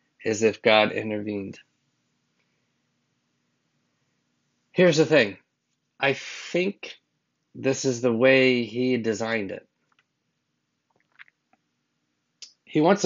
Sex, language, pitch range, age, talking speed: male, English, 100-130 Hz, 30-49, 85 wpm